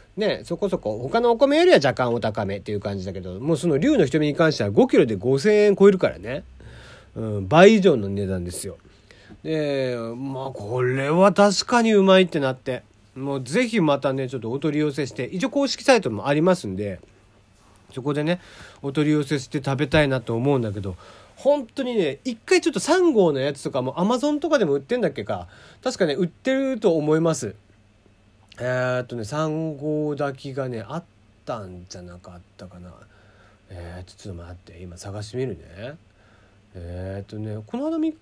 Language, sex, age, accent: Japanese, male, 40-59, native